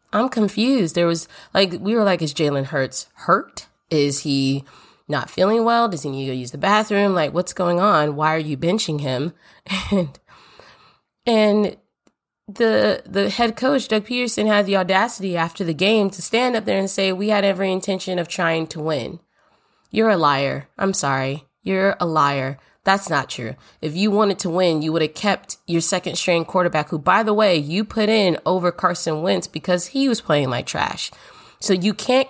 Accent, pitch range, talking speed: American, 155-200 Hz, 195 wpm